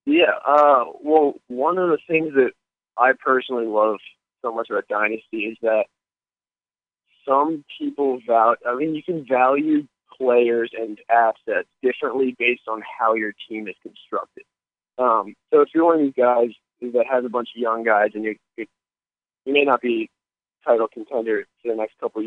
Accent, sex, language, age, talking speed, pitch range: American, male, English, 20-39, 175 wpm, 115-145 Hz